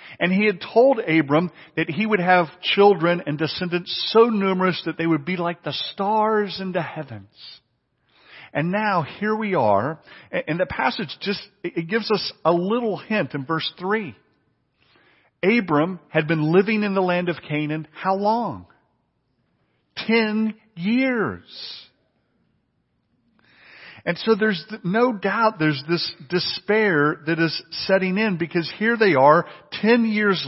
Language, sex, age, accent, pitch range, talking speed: English, male, 50-69, American, 150-215 Hz, 145 wpm